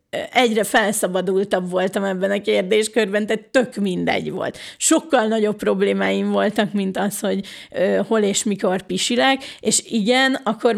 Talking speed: 135 wpm